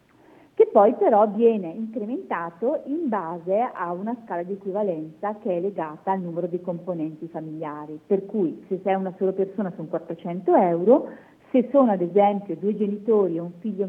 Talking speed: 170 wpm